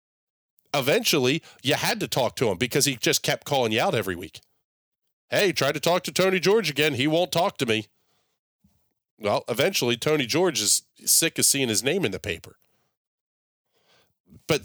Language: English